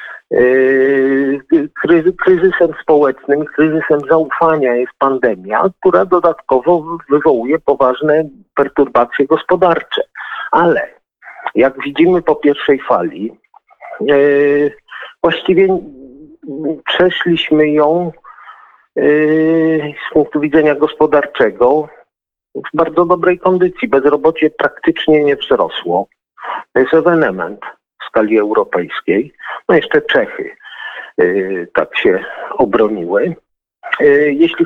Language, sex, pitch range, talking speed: Polish, male, 140-205 Hz, 80 wpm